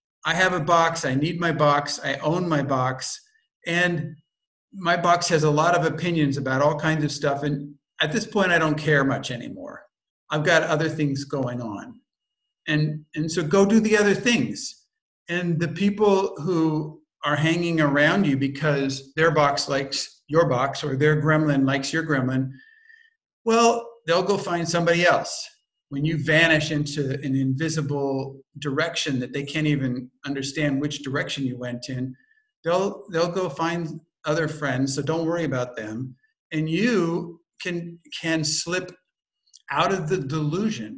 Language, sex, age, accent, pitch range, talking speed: English, male, 50-69, American, 145-175 Hz, 165 wpm